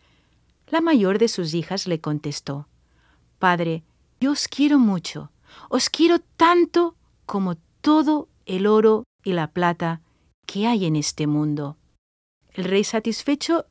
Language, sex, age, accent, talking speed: Spanish, female, 50-69, Spanish, 130 wpm